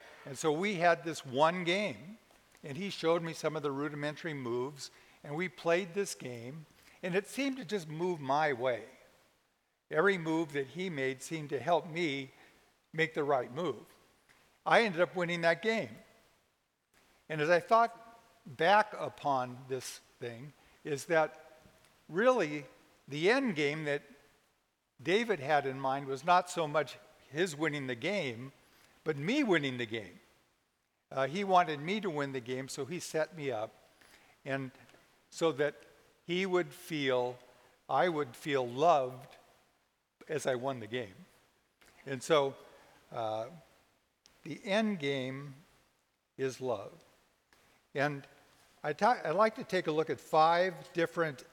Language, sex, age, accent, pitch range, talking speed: English, male, 50-69, American, 135-180 Hz, 145 wpm